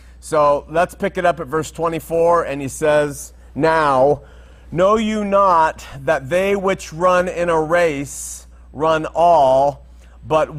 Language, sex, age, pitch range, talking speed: English, male, 40-59, 145-185 Hz, 140 wpm